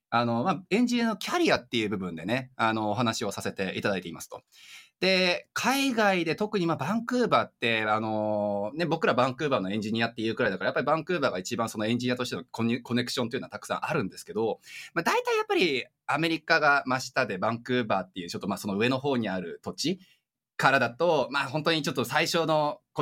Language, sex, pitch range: Japanese, male, 120-195 Hz